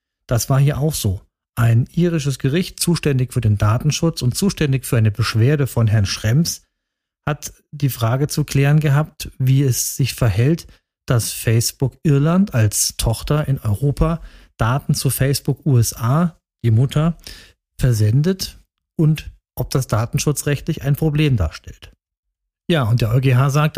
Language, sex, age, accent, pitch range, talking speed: German, male, 40-59, German, 115-150 Hz, 140 wpm